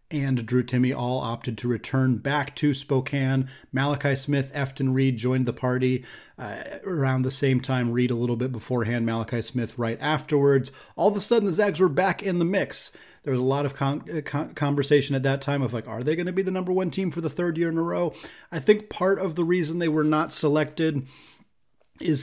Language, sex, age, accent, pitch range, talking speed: English, male, 30-49, American, 130-160 Hz, 215 wpm